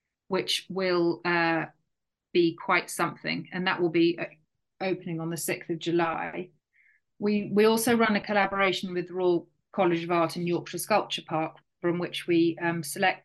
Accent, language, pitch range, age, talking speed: British, English, 165-185 Hz, 40-59, 165 wpm